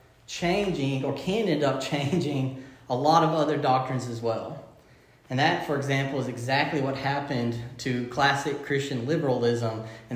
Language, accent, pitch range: English, American, 130-155 Hz